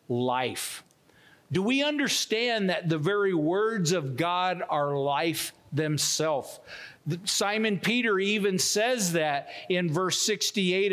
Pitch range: 165-230 Hz